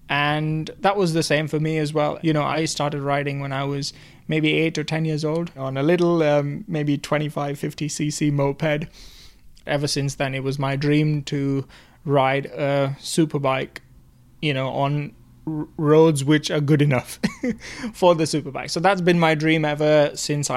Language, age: English, 20-39